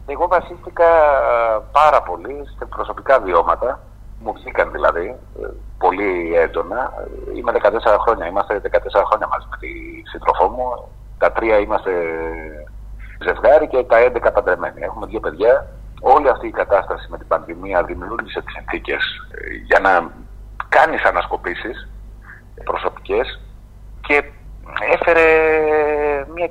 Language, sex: Greek, male